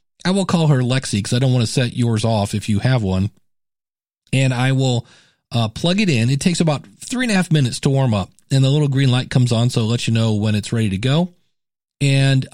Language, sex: English, male